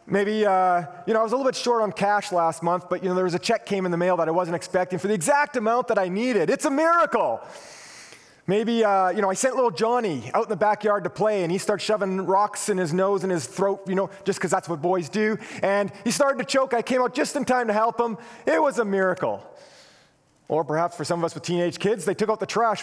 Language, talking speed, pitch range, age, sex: English, 275 wpm, 170-220 Hz, 30-49, male